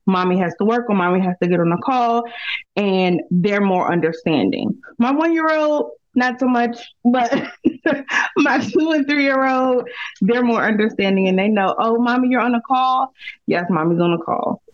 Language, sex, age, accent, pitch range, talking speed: English, female, 20-39, American, 180-230 Hz, 190 wpm